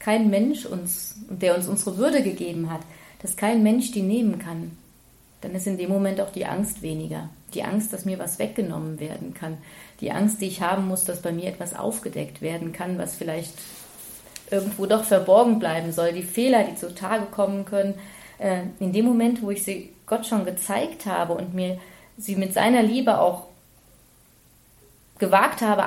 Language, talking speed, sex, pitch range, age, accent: German, 180 wpm, female, 185-215 Hz, 30-49, German